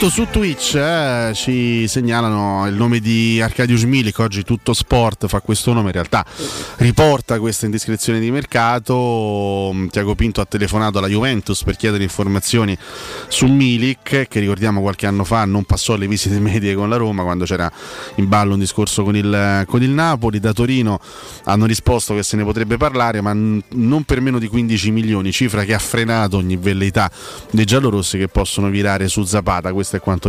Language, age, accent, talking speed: Italian, 30-49, native, 175 wpm